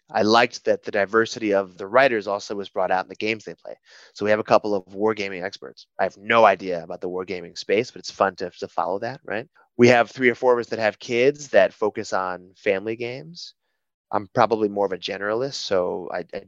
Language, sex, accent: English, male, American